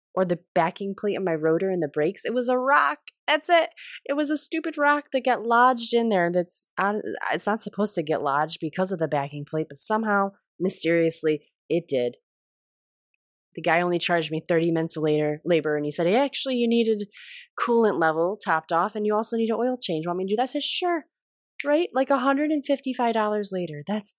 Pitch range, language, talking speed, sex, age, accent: 155-220 Hz, English, 210 wpm, female, 20-39, American